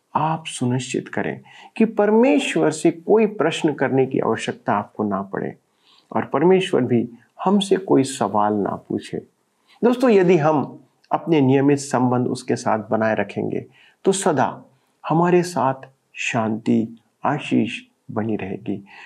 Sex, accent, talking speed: male, native, 125 wpm